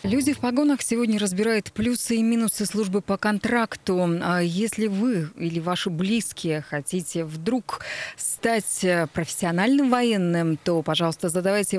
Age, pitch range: 20-39, 170-215 Hz